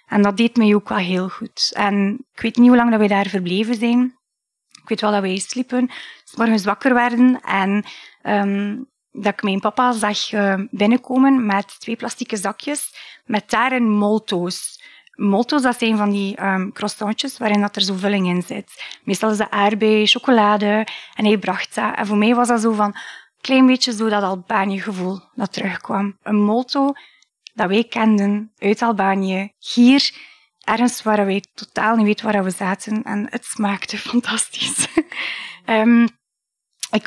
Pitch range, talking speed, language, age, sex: 200-235 Hz, 170 wpm, Dutch, 20-39, female